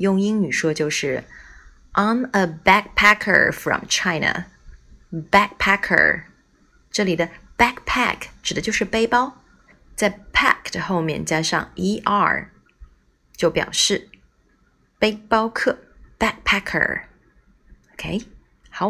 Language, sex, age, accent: Chinese, female, 20-39, native